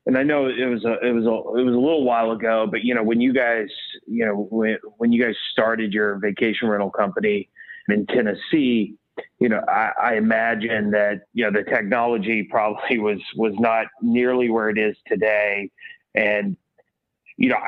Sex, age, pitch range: male, 30-49, 110-140 Hz